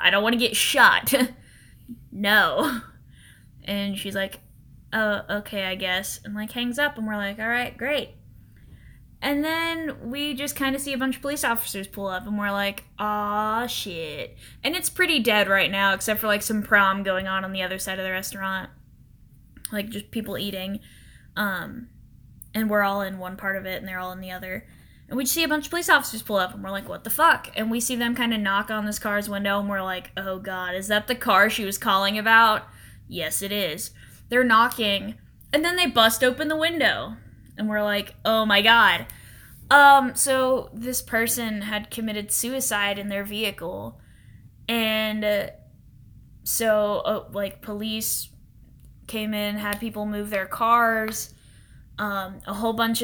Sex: female